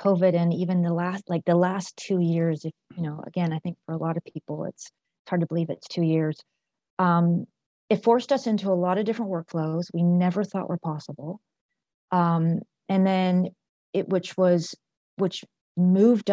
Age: 30-49